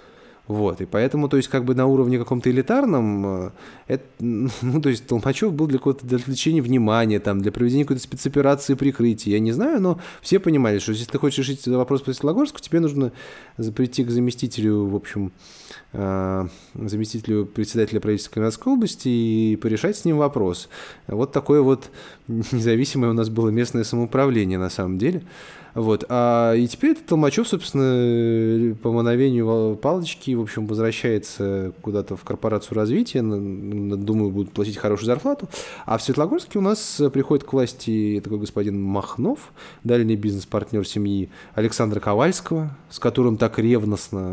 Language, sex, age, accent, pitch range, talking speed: Russian, male, 20-39, native, 105-135 Hz, 155 wpm